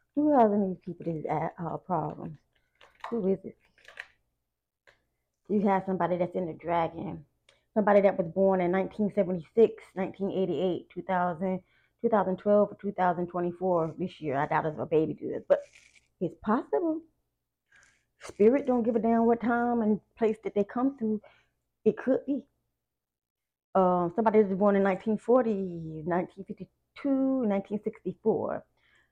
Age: 20-39